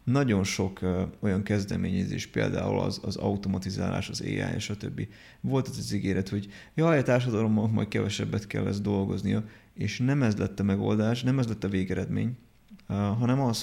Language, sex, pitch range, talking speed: Hungarian, male, 105-125 Hz, 170 wpm